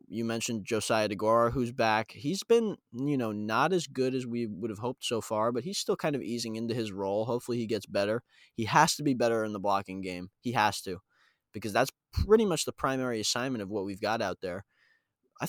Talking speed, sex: 230 wpm, male